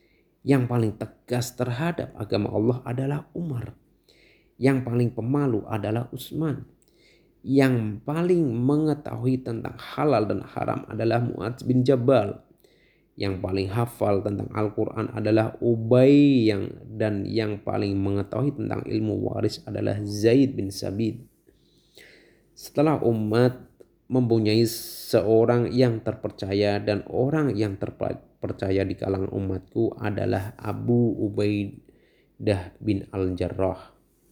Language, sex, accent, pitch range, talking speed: Indonesian, male, native, 100-125 Hz, 105 wpm